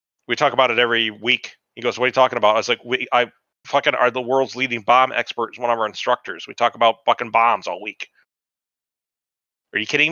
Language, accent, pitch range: English, American, 115-145 Hz